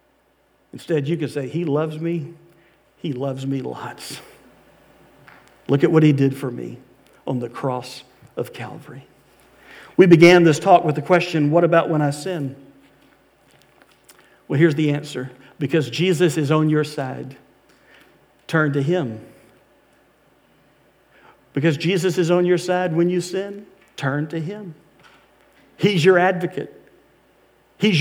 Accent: American